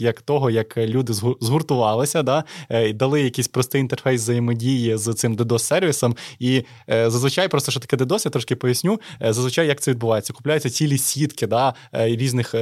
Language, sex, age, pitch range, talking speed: Ukrainian, male, 20-39, 115-140 Hz, 160 wpm